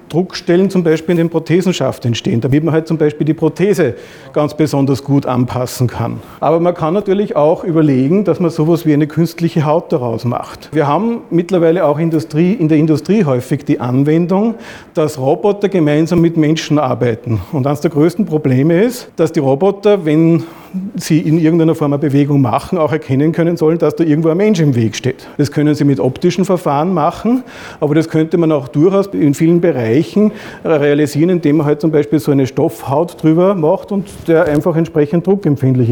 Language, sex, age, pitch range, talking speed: German, male, 40-59, 145-170 Hz, 185 wpm